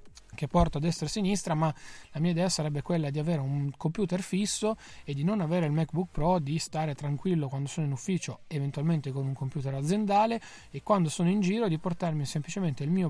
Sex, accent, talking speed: male, native, 215 wpm